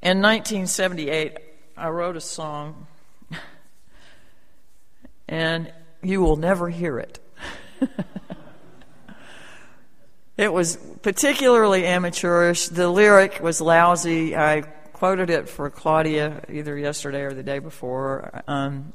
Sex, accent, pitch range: female, American, 155-200 Hz